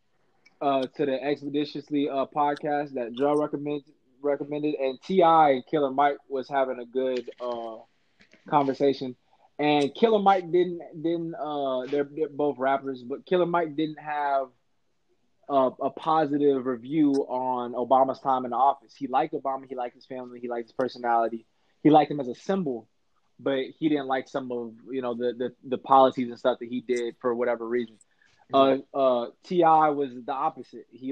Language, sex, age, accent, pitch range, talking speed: English, male, 20-39, American, 130-160 Hz, 175 wpm